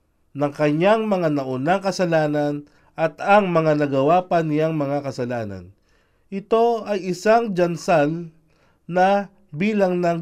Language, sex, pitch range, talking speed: Filipino, male, 150-190 Hz, 110 wpm